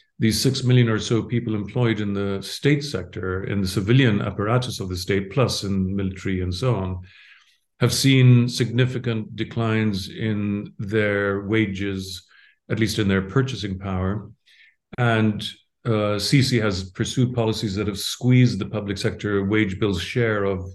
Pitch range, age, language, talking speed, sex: 100-120 Hz, 50-69, English, 155 wpm, male